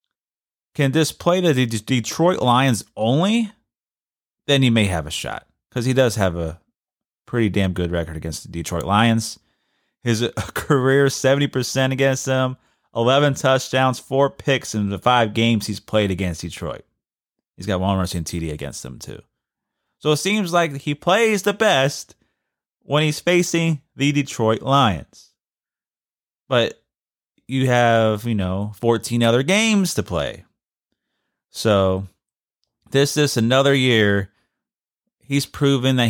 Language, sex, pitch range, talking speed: English, male, 100-140 Hz, 140 wpm